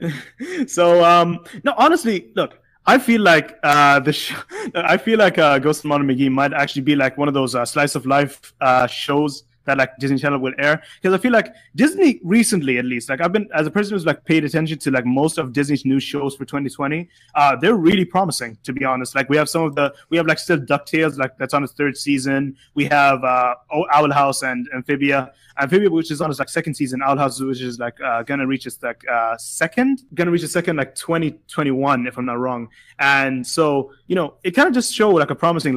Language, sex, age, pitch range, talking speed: English, male, 20-39, 135-170 Hz, 230 wpm